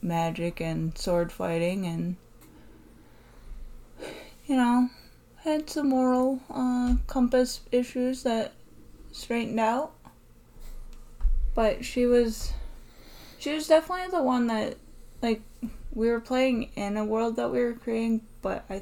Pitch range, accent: 160-225 Hz, American